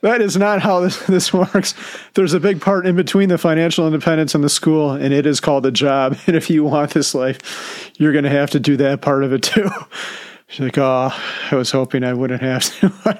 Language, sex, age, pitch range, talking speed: English, male, 40-59, 135-170 Hz, 235 wpm